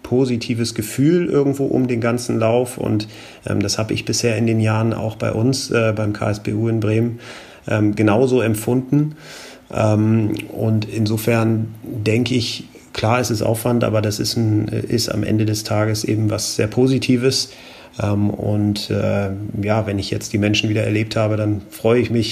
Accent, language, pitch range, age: German, German, 105-120 Hz, 30-49